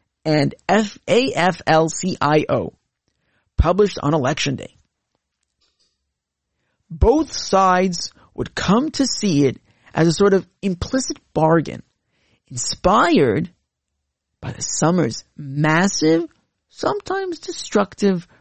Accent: American